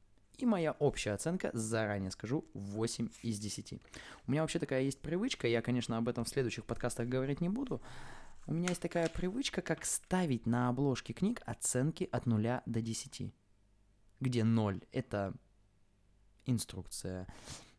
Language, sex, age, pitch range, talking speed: Russian, male, 20-39, 100-120 Hz, 150 wpm